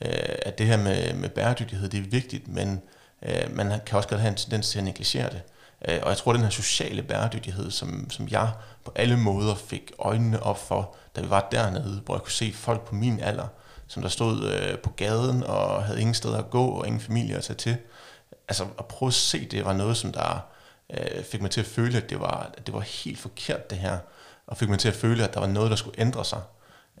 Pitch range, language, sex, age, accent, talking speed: 100-120 Hz, Danish, male, 30-49, native, 235 wpm